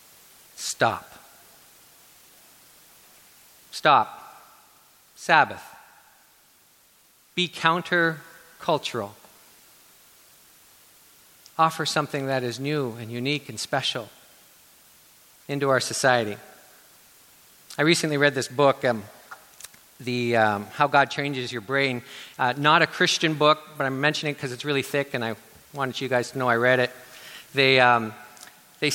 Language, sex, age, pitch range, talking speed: English, male, 50-69, 130-170 Hz, 115 wpm